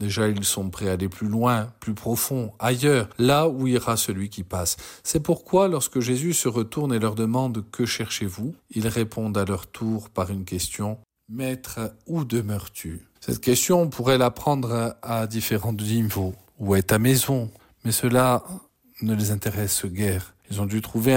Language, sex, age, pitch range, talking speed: French, male, 50-69, 105-130 Hz, 175 wpm